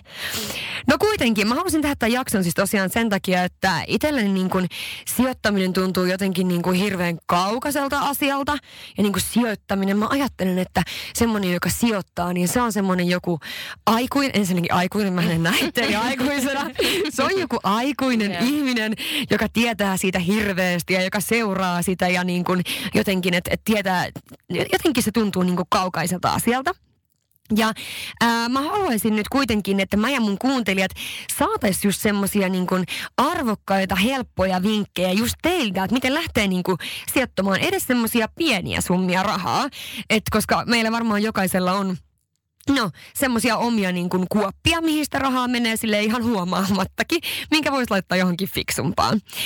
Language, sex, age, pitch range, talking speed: Finnish, female, 20-39, 185-235 Hz, 145 wpm